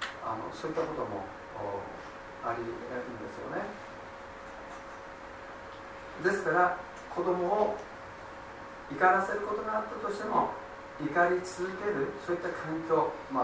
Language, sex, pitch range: Japanese, male, 110-180 Hz